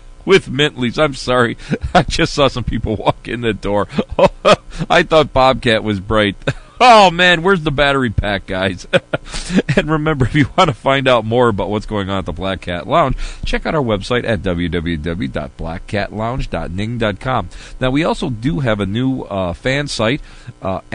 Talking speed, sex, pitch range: 170 wpm, male, 85-135 Hz